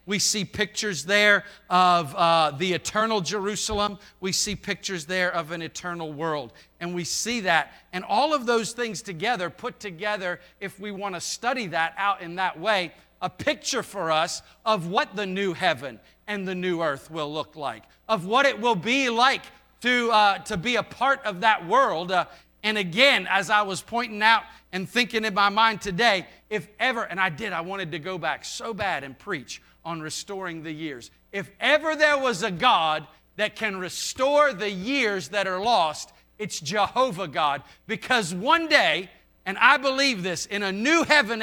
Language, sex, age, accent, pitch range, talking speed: English, male, 40-59, American, 175-235 Hz, 190 wpm